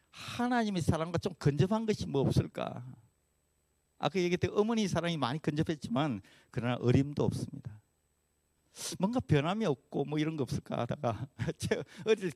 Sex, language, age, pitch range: male, Korean, 50-69, 105-160 Hz